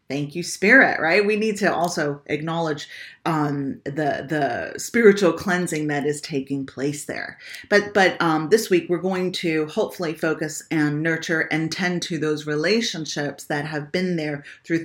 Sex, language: female, English